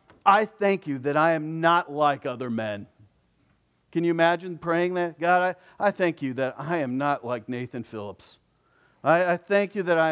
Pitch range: 140-190 Hz